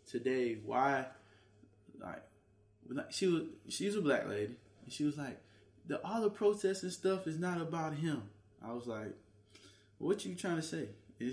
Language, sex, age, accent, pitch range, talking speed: English, male, 20-39, American, 110-160 Hz, 170 wpm